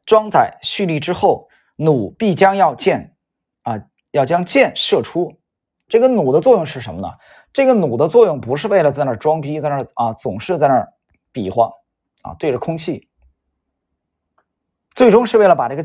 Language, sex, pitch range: Chinese, male, 130-200 Hz